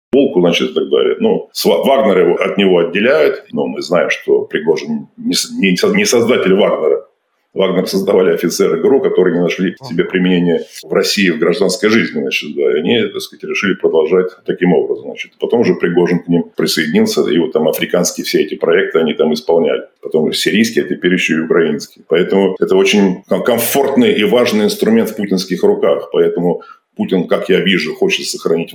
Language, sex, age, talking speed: Russian, male, 50-69, 190 wpm